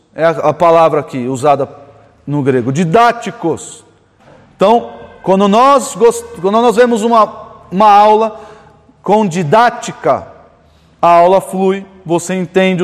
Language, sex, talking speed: Portuguese, male, 105 wpm